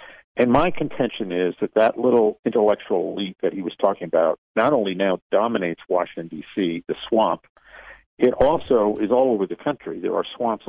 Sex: male